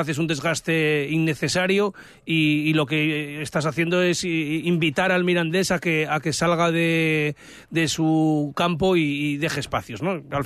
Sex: male